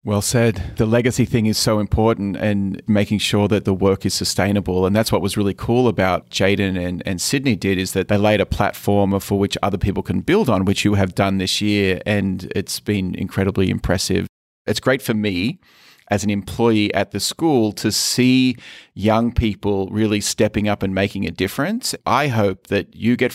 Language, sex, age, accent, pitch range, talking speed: English, male, 30-49, Australian, 100-120 Hz, 200 wpm